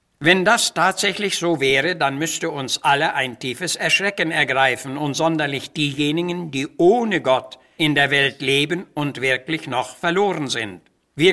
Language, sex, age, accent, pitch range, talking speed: German, male, 60-79, German, 140-170 Hz, 155 wpm